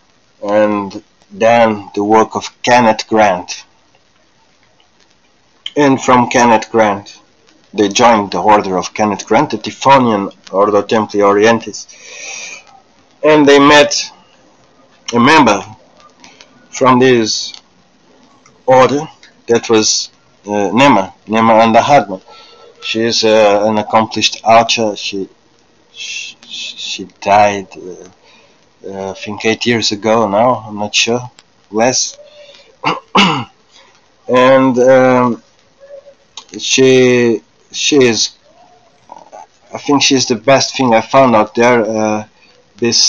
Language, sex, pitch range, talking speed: English, male, 105-130 Hz, 110 wpm